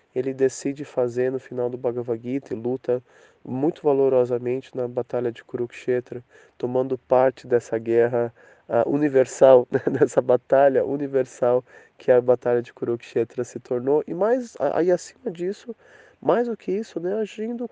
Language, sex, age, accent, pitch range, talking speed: English, male, 20-39, Brazilian, 130-180 Hz, 150 wpm